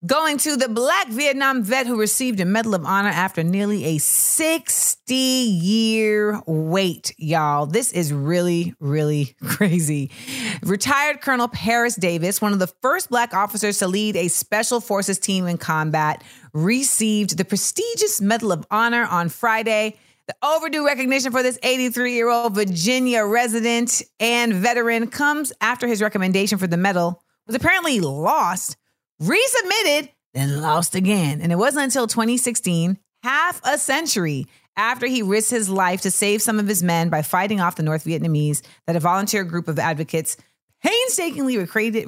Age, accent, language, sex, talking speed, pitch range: 30-49, American, English, female, 150 wpm, 165-235 Hz